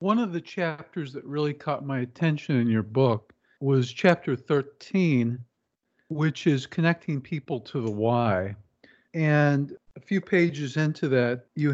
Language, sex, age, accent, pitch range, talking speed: English, male, 50-69, American, 125-165 Hz, 150 wpm